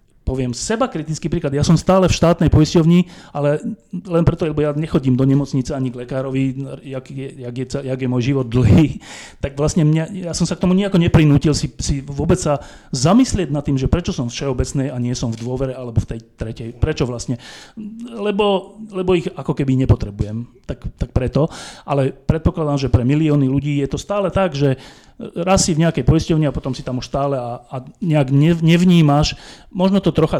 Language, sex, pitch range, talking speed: Slovak, male, 125-160 Hz, 195 wpm